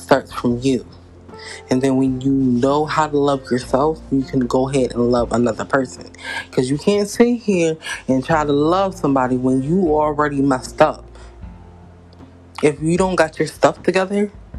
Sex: female